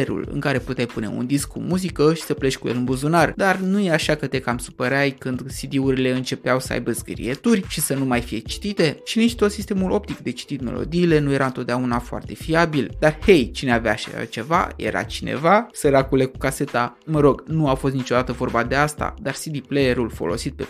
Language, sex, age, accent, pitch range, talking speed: Romanian, male, 20-39, native, 125-160 Hz, 210 wpm